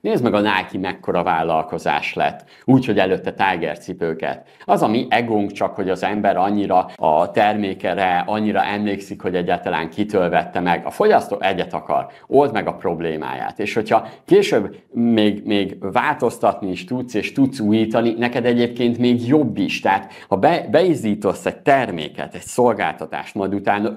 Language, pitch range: Hungarian, 100-125 Hz